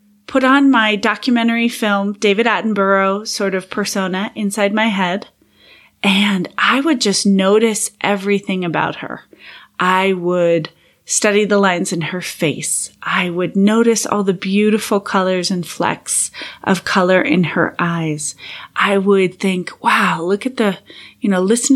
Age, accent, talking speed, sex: 30-49, American, 145 wpm, female